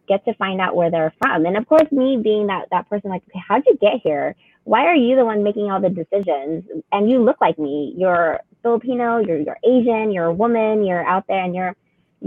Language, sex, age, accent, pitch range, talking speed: English, female, 20-39, American, 175-215 Hz, 235 wpm